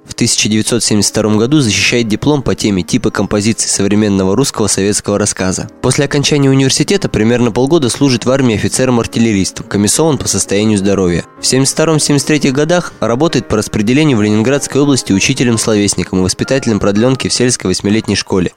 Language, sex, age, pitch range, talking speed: Russian, male, 20-39, 105-135 Hz, 140 wpm